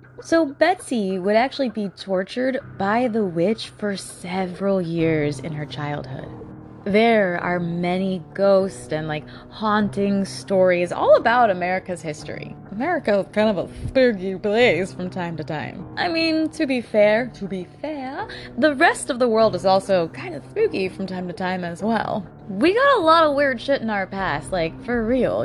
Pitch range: 180-285 Hz